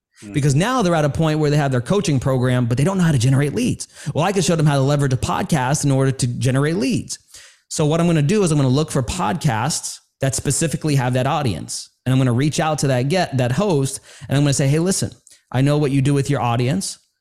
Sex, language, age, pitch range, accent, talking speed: male, English, 30-49, 125-160 Hz, American, 275 wpm